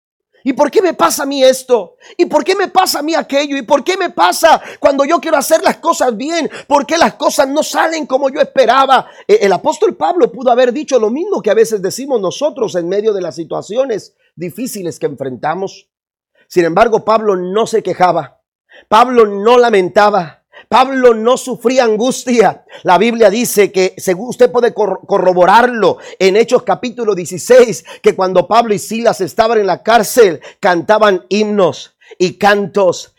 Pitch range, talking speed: 210-300 Hz, 175 wpm